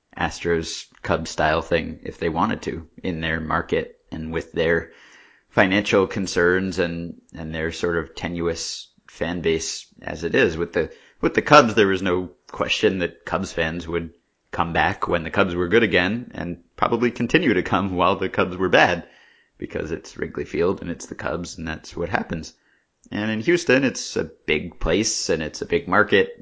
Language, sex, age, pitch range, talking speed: English, male, 30-49, 80-95 Hz, 185 wpm